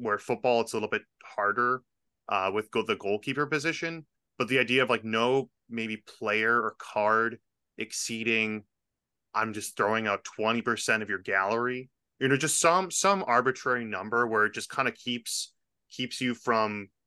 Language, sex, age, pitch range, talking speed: English, male, 20-39, 110-130 Hz, 170 wpm